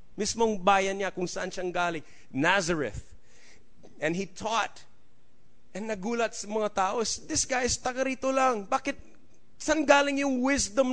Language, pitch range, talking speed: English, 185-260 Hz, 145 wpm